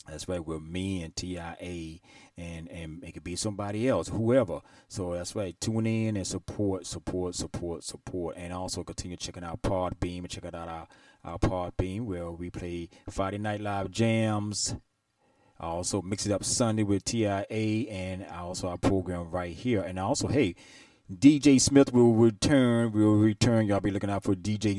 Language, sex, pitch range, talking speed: English, male, 90-110 Hz, 180 wpm